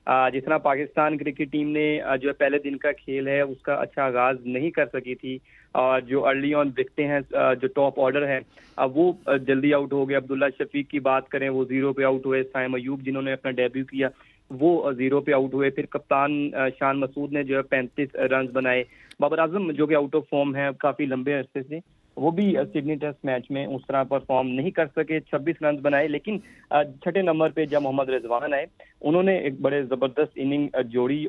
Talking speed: 210 wpm